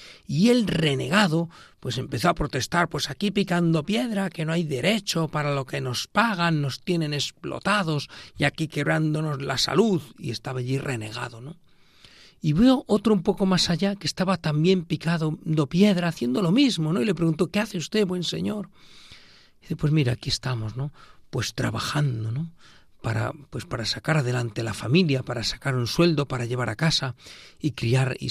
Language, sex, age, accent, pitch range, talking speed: Spanish, male, 40-59, Spanish, 130-190 Hz, 180 wpm